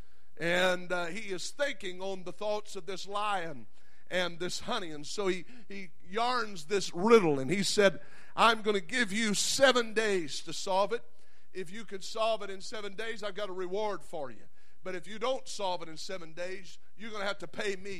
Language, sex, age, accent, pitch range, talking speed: English, male, 50-69, American, 185-225 Hz, 215 wpm